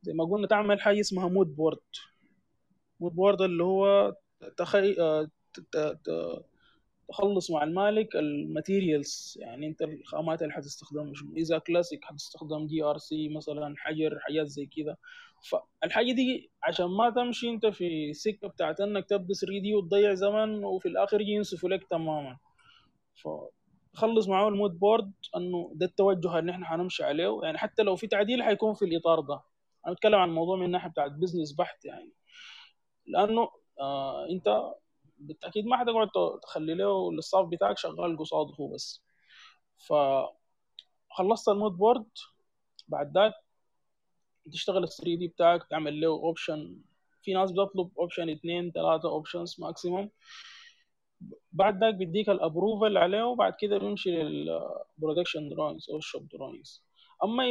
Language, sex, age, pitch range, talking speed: Arabic, male, 20-39, 160-210 Hz, 140 wpm